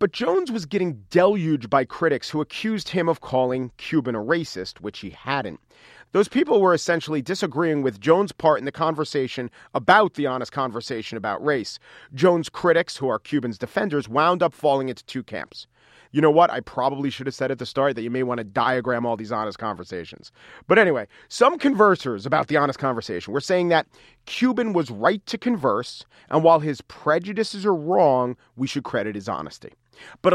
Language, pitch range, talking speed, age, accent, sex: English, 125-185 Hz, 190 wpm, 40-59, American, male